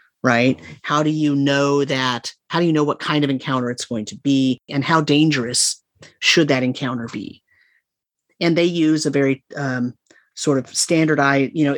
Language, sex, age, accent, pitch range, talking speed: English, male, 30-49, American, 135-155 Hz, 185 wpm